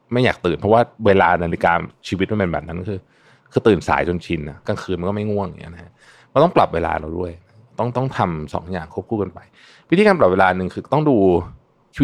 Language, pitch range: Thai, 85-115 Hz